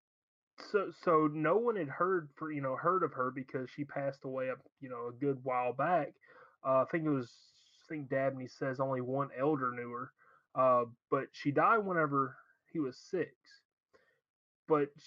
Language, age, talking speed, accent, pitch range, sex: English, 30-49, 185 wpm, American, 130-160 Hz, male